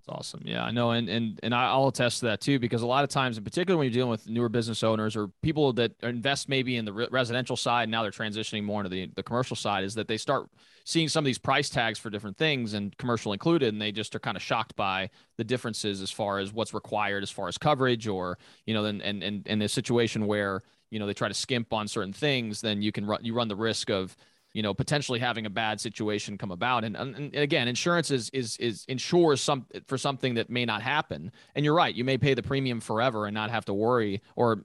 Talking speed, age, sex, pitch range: 260 wpm, 30-49, male, 105-125 Hz